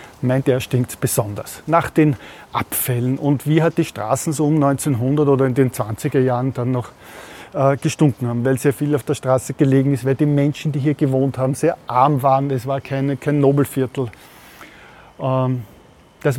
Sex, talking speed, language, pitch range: male, 185 wpm, German, 125-145 Hz